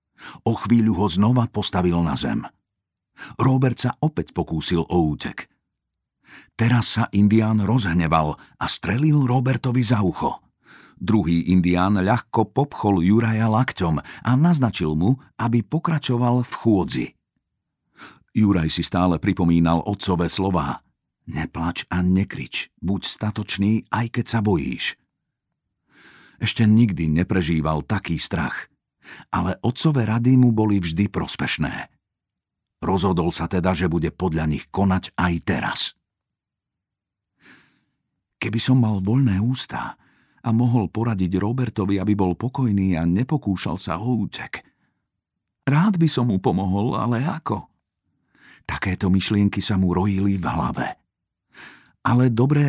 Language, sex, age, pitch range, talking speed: Slovak, male, 50-69, 90-120 Hz, 120 wpm